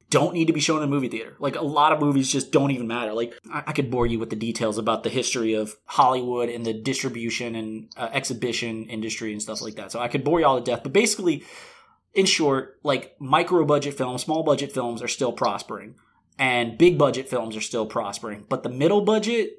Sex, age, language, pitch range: male, 20-39, English, 120-160 Hz